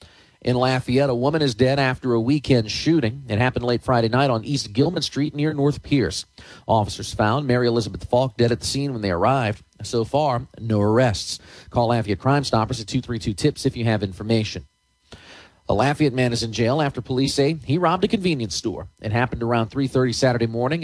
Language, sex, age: English, male, 40-59